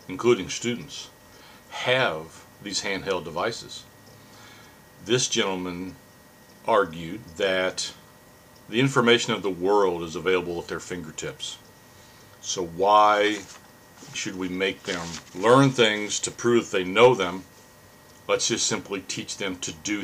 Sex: male